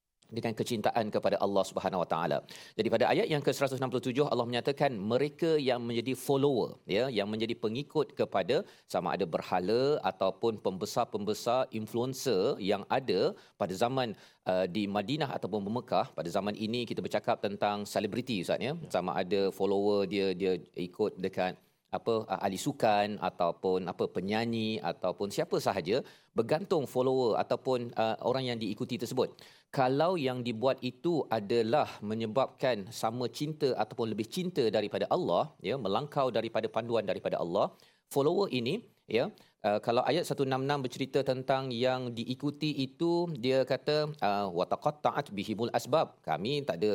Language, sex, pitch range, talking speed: Malayalam, male, 105-135 Hz, 145 wpm